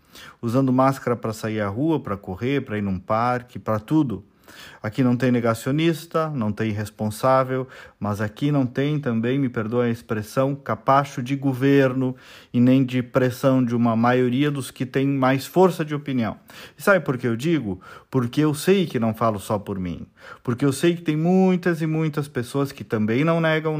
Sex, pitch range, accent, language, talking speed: male, 120-165 Hz, Brazilian, Portuguese, 190 wpm